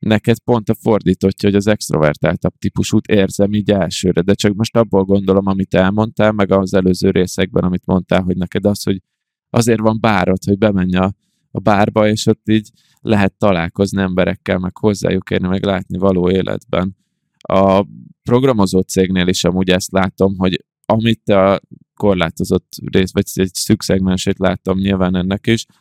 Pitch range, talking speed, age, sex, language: 95-110 Hz, 160 wpm, 20-39, male, Hungarian